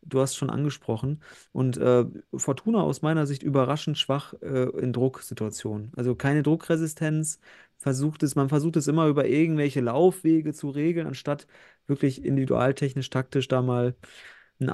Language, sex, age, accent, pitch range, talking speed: German, male, 30-49, German, 120-145 Hz, 145 wpm